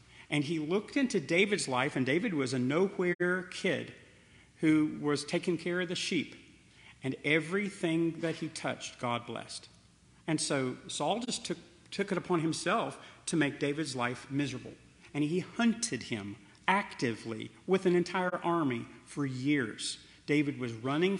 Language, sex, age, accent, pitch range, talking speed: English, male, 40-59, American, 125-175 Hz, 155 wpm